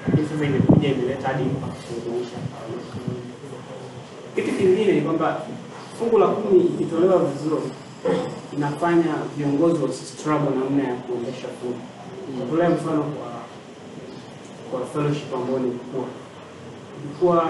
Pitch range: 130-165 Hz